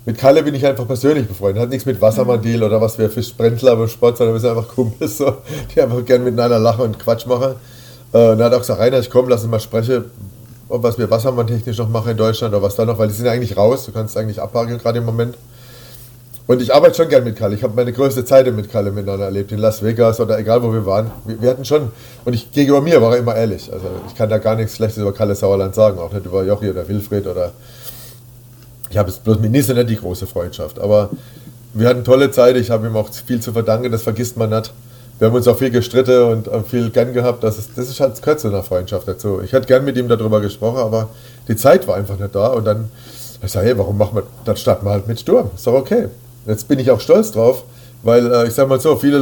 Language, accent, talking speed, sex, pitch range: German, German, 255 wpm, male, 110-125 Hz